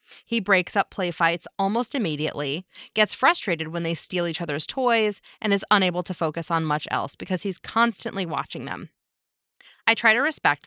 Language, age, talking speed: English, 20-39, 180 wpm